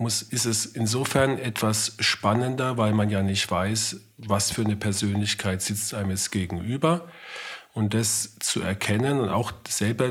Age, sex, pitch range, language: 40-59, male, 100-120 Hz, German